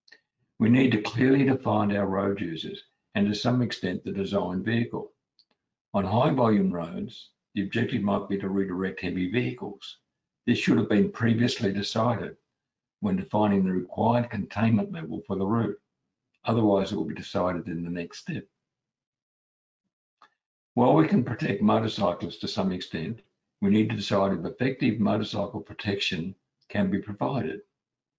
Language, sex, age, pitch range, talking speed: English, male, 60-79, 95-115 Hz, 150 wpm